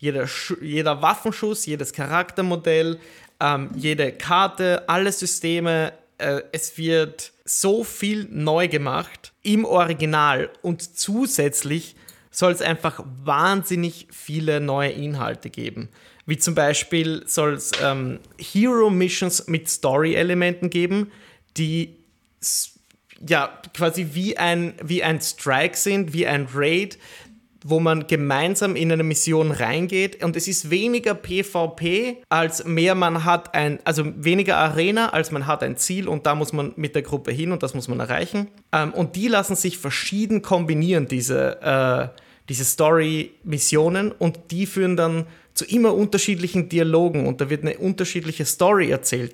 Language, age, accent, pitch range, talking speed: German, 30-49, German, 155-185 Hz, 135 wpm